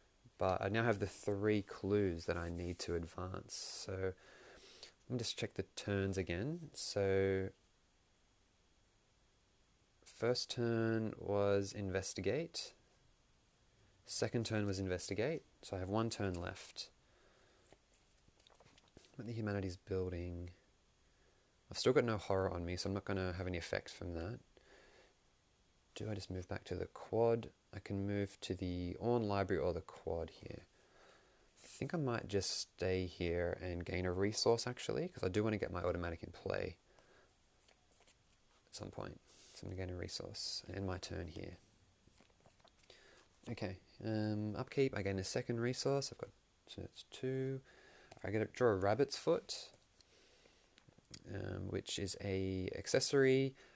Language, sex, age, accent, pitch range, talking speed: English, male, 20-39, Australian, 90-110 Hz, 150 wpm